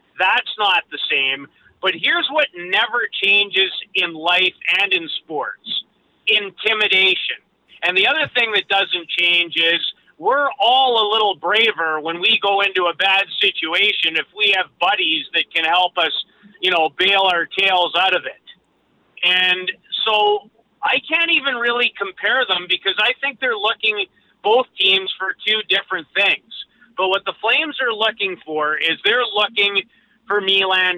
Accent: American